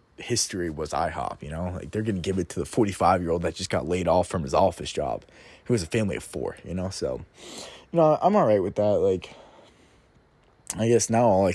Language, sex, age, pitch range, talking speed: English, male, 20-39, 90-125 Hz, 240 wpm